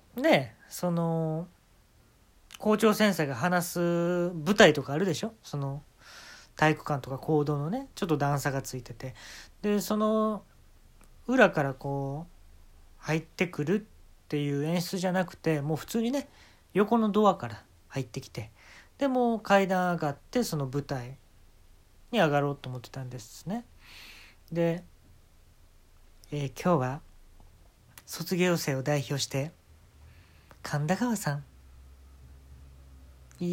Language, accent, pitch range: Japanese, native, 120-185 Hz